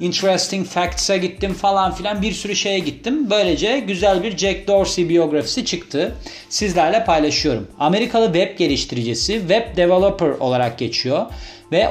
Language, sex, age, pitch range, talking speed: Turkish, male, 40-59, 135-175 Hz, 130 wpm